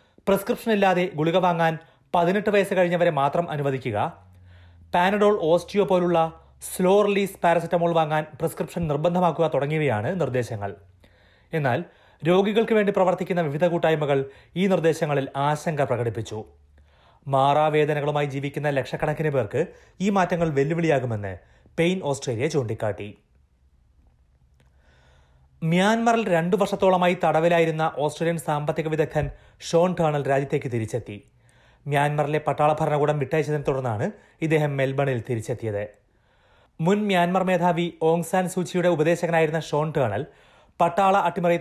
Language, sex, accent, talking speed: Malayalam, male, native, 100 wpm